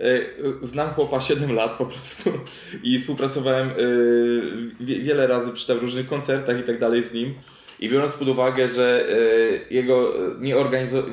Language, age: Portuguese, 20-39